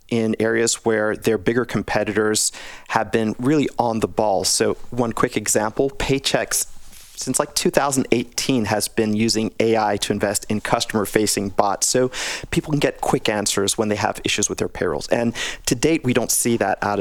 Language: English